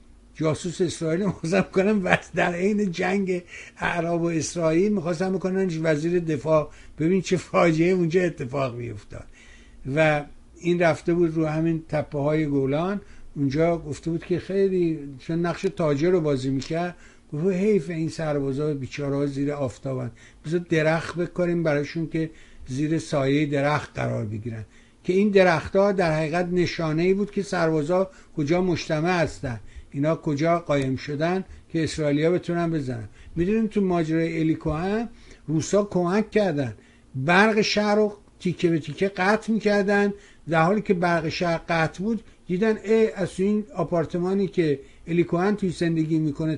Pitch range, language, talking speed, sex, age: 150-190 Hz, Persian, 145 wpm, male, 60-79